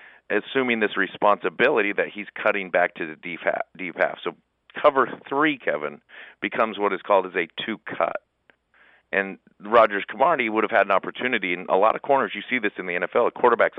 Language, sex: English, male